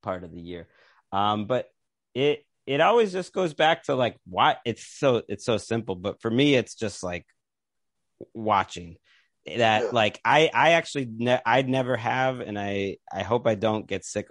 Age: 30-49